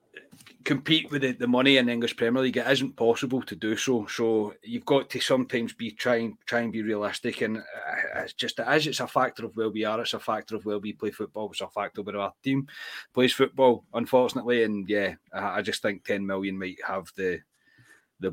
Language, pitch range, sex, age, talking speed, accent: English, 105-125 Hz, male, 30-49, 220 wpm, British